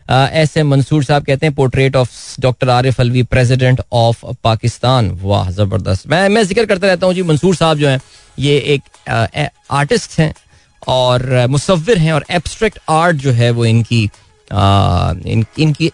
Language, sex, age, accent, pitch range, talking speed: Hindi, male, 20-39, native, 120-155 Hz, 155 wpm